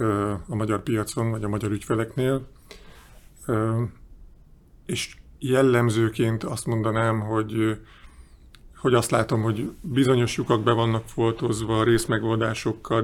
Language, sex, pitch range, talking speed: Hungarian, male, 110-120 Hz, 100 wpm